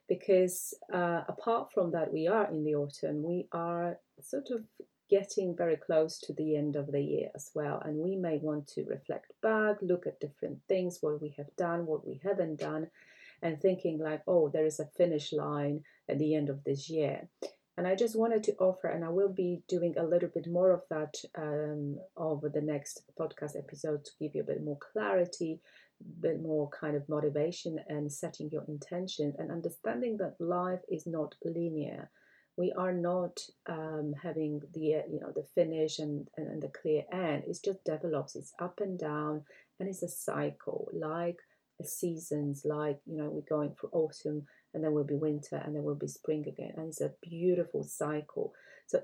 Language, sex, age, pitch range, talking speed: English, female, 30-49, 150-180 Hz, 195 wpm